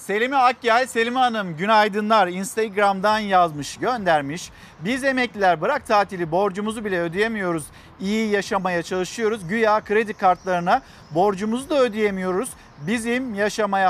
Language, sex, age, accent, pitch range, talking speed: Turkish, male, 50-69, native, 155-200 Hz, 110 wpm